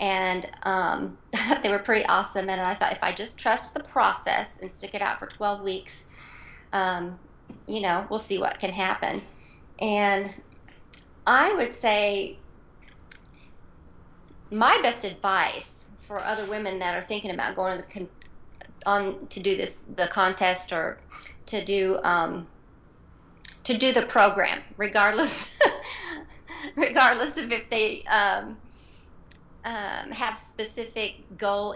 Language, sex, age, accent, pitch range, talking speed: English, female, 40-59, American, 190-225 Hz, 130 wpm